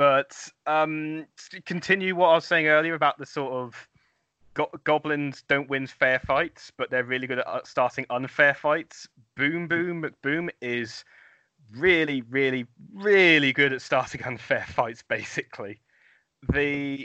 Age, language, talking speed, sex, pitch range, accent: 30-49, English, 140 wpm, male, 130-160 Hz, British